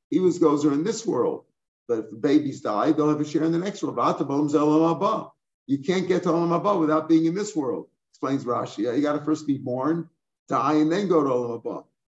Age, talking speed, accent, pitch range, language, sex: 50-69, 210 wpm, American, 150-175 Hz, English, male